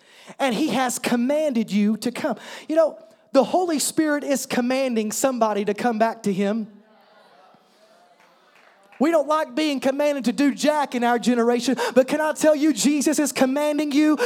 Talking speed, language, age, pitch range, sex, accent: 170 wpm, English, 30-49, 245-315 Hz, male, American